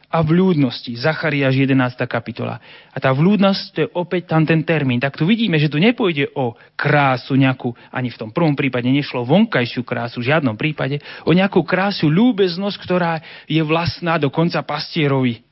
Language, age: Slovak, 30-49